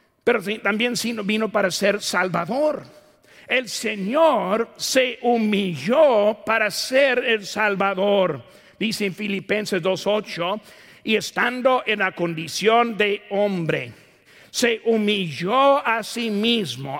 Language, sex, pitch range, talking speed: Spanish, male, 160-225 Hz, 105 wpm